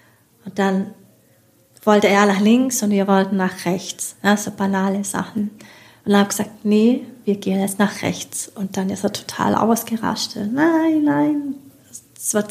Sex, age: female, 30-49